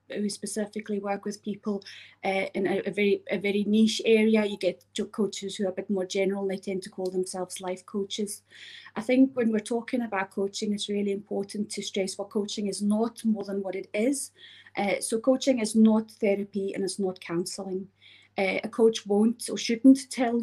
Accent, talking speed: British, 205 wpm